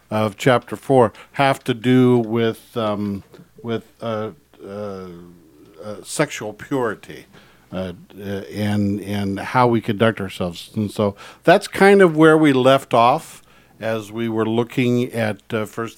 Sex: male